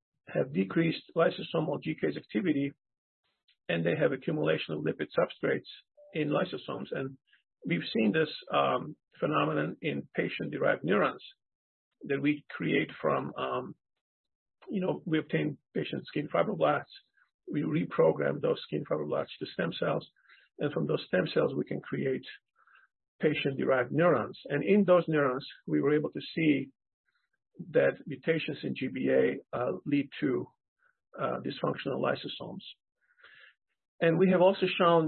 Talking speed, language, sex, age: 130 wpm, English, male, 50-69